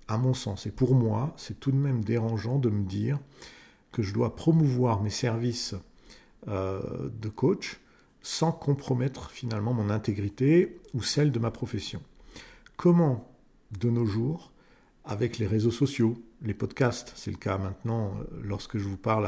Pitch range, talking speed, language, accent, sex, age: 110-140 Hz, 155 wpm, French, French, male, 50-69